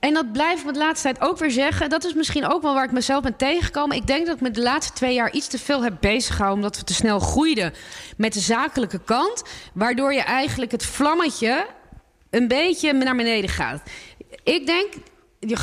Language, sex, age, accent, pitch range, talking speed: English, female, 20-39, Dutch, 230-295 Hz, 220 wpm